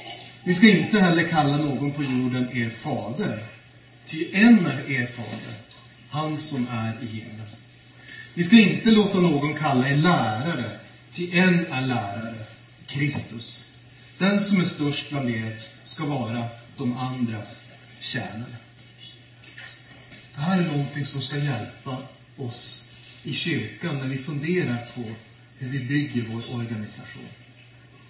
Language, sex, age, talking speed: Swedish, male, 40-59, 135 wpm